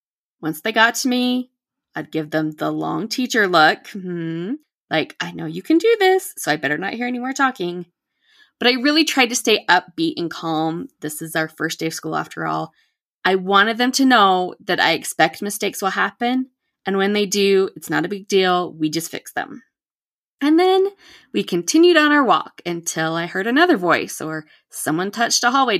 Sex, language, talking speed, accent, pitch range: female, English, 200 wpm, American, 170-255 Hz